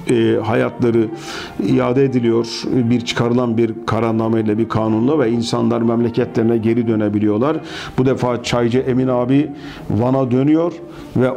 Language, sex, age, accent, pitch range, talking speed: Turkish, male, 50-69, native, 120-145 Hz, 115 wpm